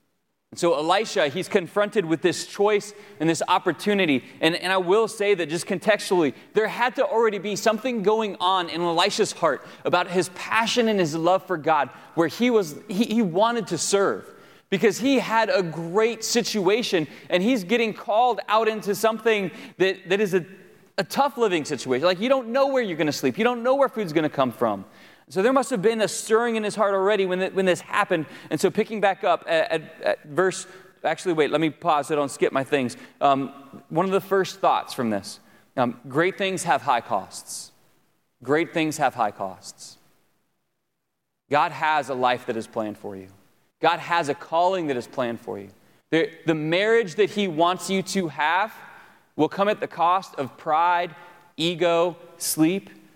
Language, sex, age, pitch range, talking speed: English, male, 30-49, 165-215 Hz, 195 wpm